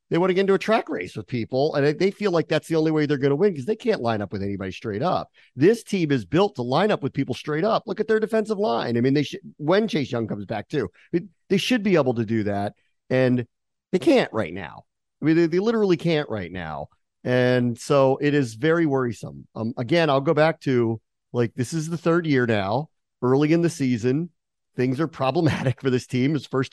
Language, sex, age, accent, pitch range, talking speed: English, male, 40-59, American, 120-165 Hz, 240 wpm